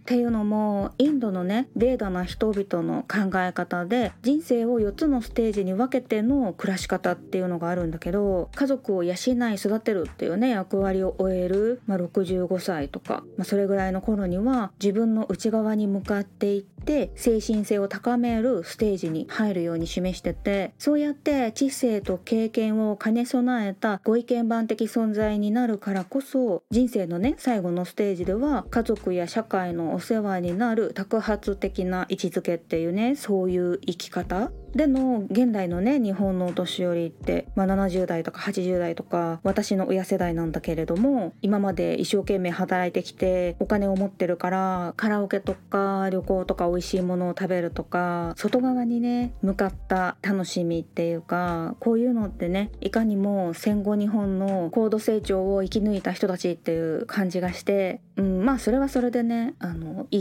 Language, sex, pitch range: Japanese, female, 180-230 Hz